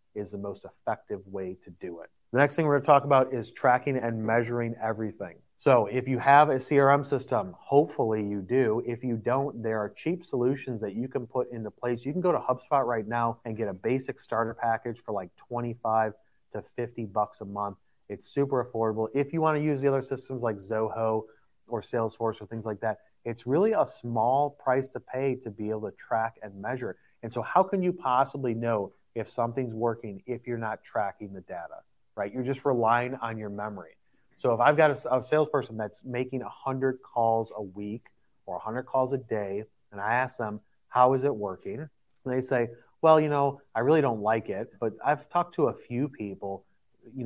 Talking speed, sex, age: 210 wpm, male, 30-49